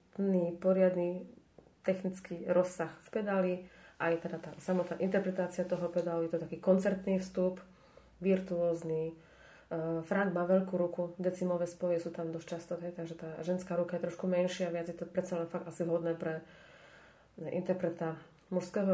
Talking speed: 150 wpm